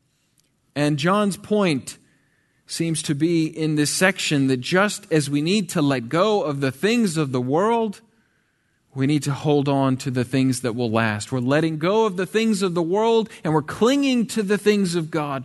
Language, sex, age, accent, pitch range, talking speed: English, male, 40-59, American, 135-180 Hz, 200 wpm